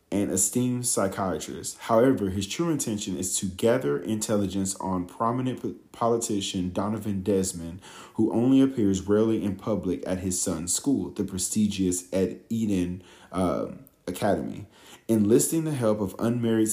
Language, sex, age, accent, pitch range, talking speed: English, male, 40-59, American, 95-110 Hz, 135 wpm